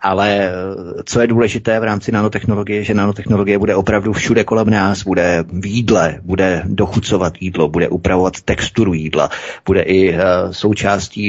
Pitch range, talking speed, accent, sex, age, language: 90-105 Hz, 145 wpm, native, male, 30-49, Czech